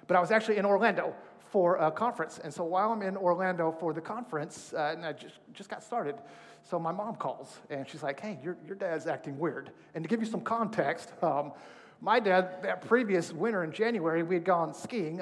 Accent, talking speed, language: American, 215 wpm, English